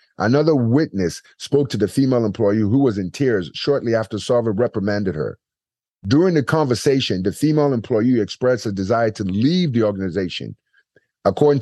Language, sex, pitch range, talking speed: English, male, 100-130 Hz, 155 wpm